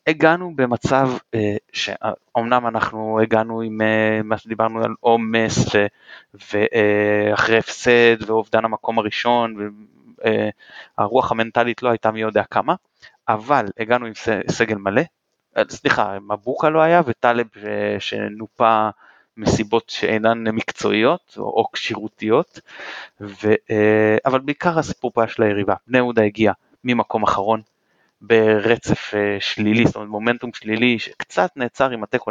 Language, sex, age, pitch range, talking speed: Hebrew, male, 30-49, 105-120 Hz, 115 wpm